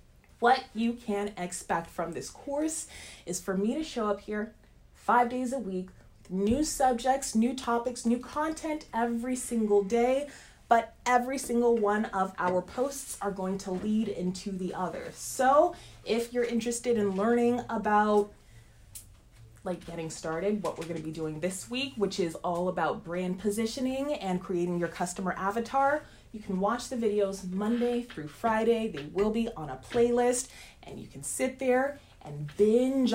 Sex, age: female, 20-39